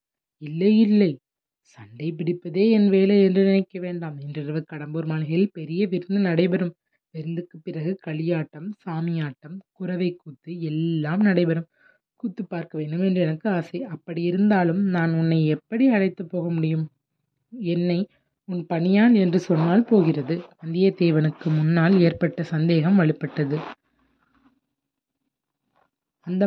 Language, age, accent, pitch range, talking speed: Tamil, 30-49, native, 165-200 Hz, 105 wpm